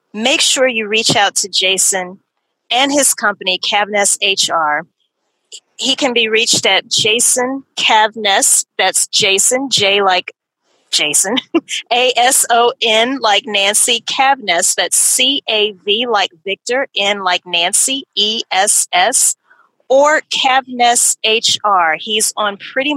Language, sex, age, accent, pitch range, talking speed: English, female, 40-59, American, 190-235 Hz, 130 wpm